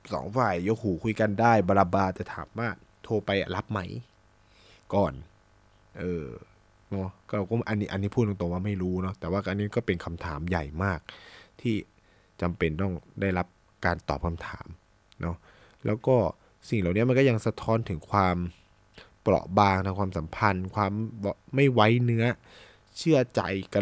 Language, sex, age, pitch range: Thai, male, 20-39, 95-120 Hz